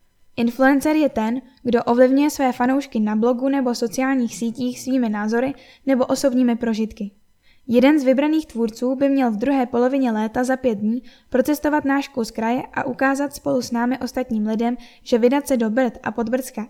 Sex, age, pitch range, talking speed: female, 10-29, 230-270 Hz, 175 wpm